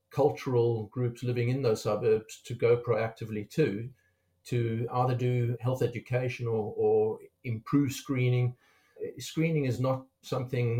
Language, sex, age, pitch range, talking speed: English, male, 50-69, 115-130 Hz, 130 wpm